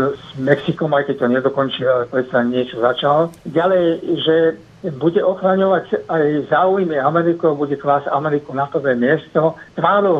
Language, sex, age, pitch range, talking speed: Slovak, male, 60-79, 125-165 Hz, 140 wpm